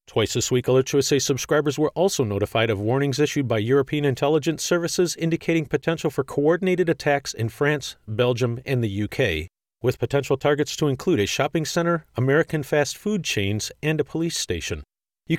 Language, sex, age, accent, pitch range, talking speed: English, male, 40-59, American, 120-155 Hz, 170 wpm